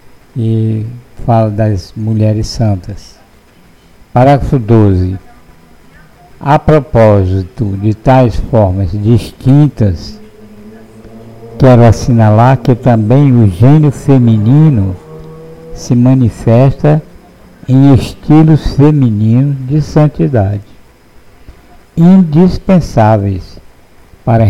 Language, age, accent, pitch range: Portuguese, 60-79, Brazilian, 105-140 Hz